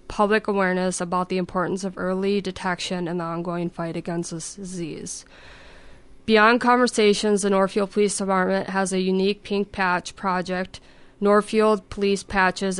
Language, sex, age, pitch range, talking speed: English, female, 20-39, 180-195 Hz, 140 wpm